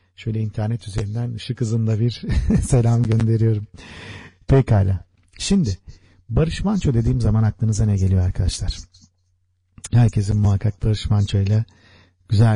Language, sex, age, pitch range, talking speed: Turkish, male, 50-69, 100-115 Hz, 110 wpm